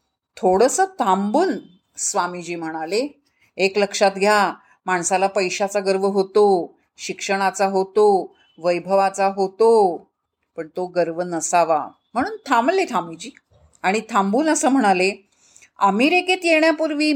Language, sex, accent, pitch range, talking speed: Marathi, female, native, 190-265 Hz, 100 wpm